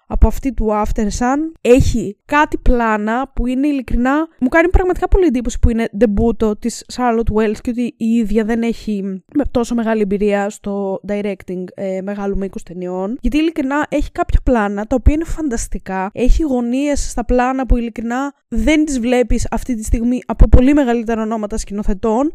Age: 20-39